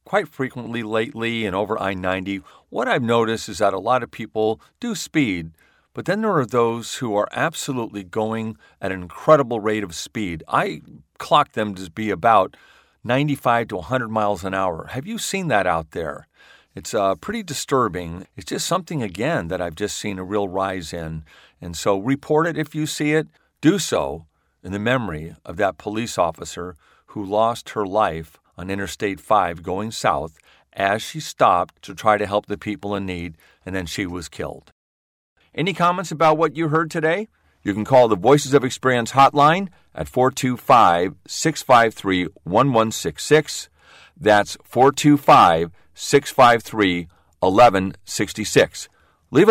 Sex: male